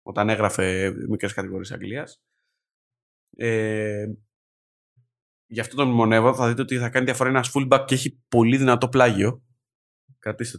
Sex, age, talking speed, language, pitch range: male, 20-39, 135 wpm, Greek, 105-130 Hz